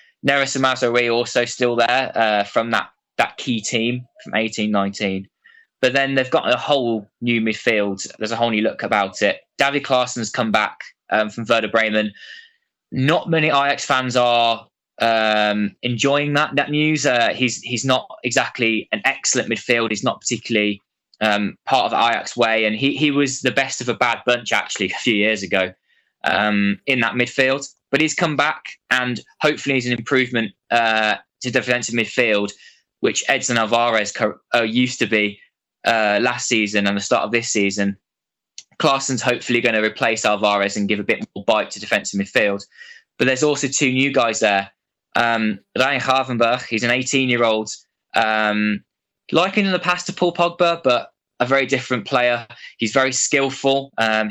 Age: 20-39